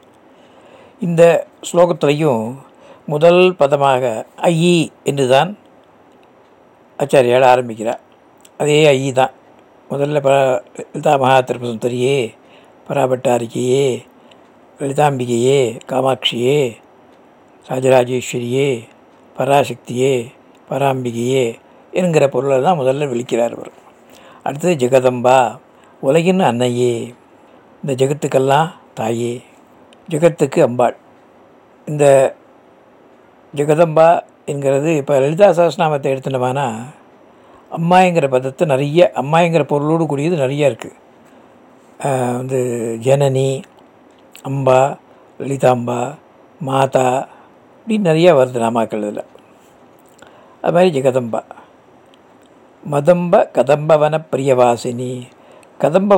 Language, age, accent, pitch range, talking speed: English, 60-79, Indian, 125-155 Hz, 45 wpm